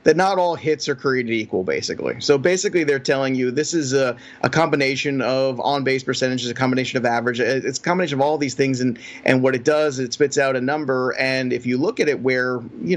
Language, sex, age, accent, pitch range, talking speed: English, male, 30-49, American, 125-155 Hz, 235 wpm